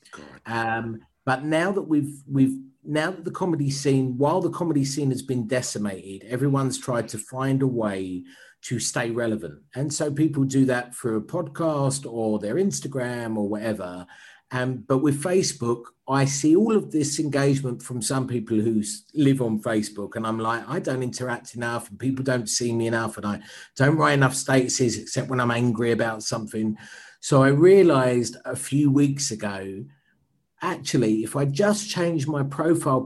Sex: male